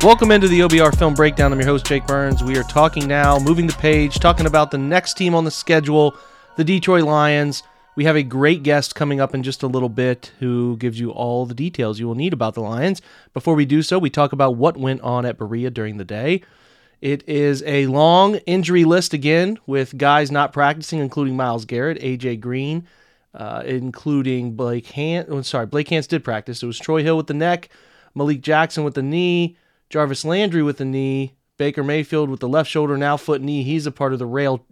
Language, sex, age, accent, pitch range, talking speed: English, male, 30-49, American, 130-160 Hz, 215 wpm